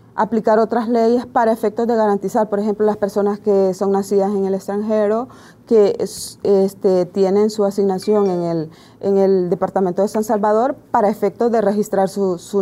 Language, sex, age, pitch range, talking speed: Spanish, female, 30-49, 185-220 Hz, 170 wpm